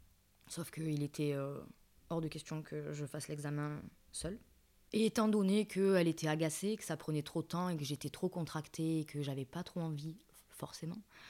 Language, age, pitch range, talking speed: French, 20-39, 145-165 Hz, 190 wpm